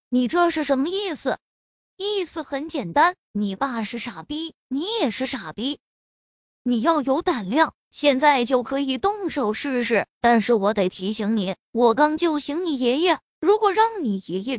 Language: Chinese